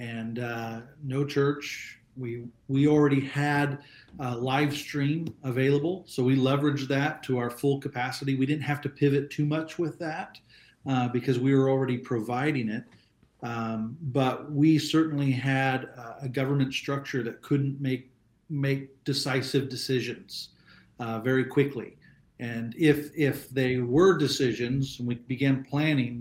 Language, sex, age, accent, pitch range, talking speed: English, male, 40-59, American, 120-145 Hz, 145 wpm